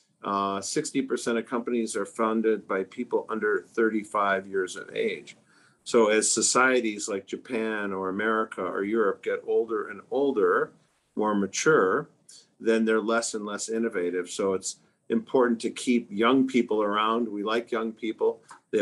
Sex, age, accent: male, 50-69, American